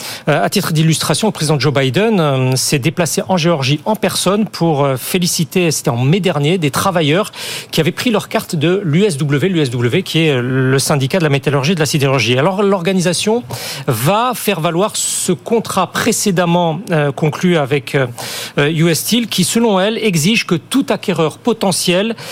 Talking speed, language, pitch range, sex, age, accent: 160 wpm, French, 160-210 Hz, male, 40-59, French